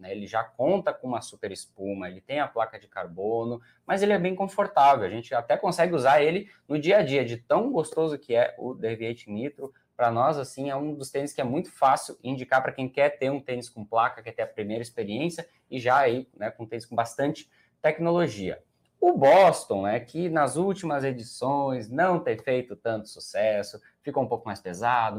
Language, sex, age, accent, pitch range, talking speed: Portuguese, male, 20-39, Brazilian, 115-150 Hz, 210 wpm